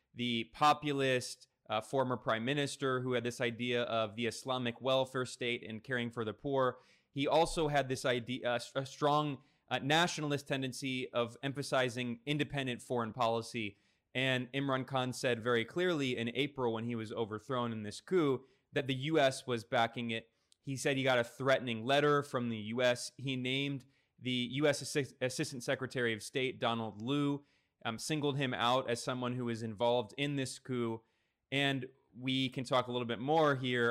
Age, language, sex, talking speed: 20-39, English, male, 170 wpm